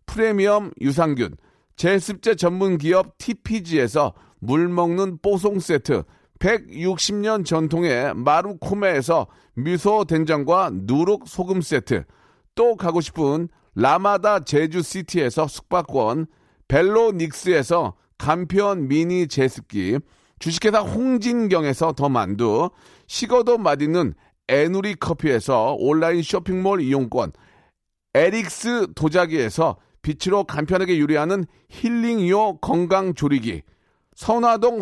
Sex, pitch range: male, 155-215 Hz